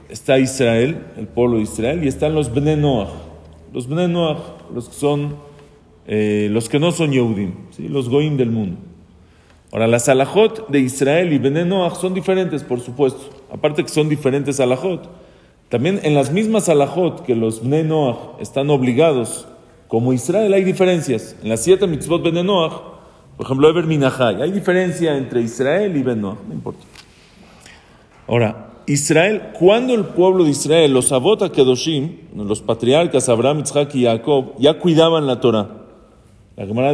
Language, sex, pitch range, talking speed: English, male, 120-165 Hz, 155 wpm